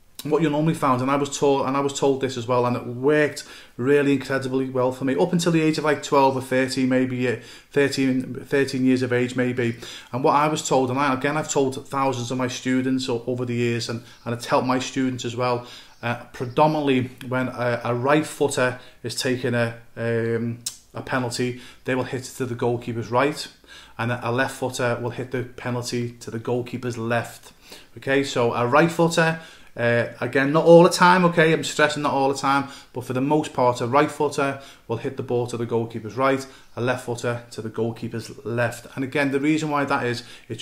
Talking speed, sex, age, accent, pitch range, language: 220 wpm, male, 30-49, British, 120-140 Hz, English